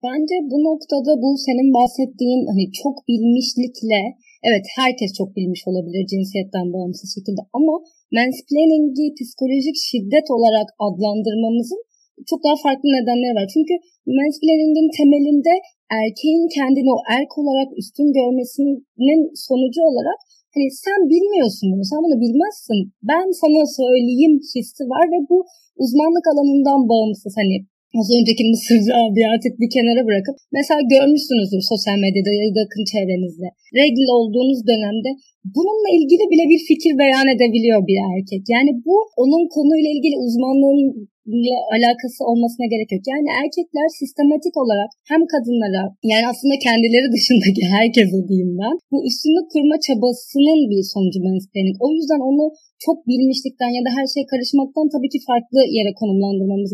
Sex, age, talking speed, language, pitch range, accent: female, 30-49, 135 wpm, Turkish, 215-295 Hz, native